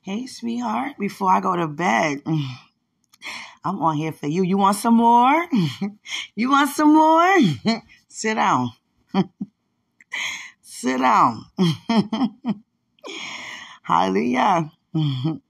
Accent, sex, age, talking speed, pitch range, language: American, female, 20-39, 95 wpm, 140-220 Hz, English